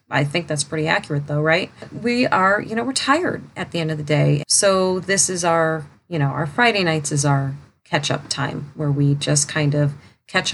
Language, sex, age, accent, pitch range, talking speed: English, female, 30-49, American, 145-175 Hz, 220 wpm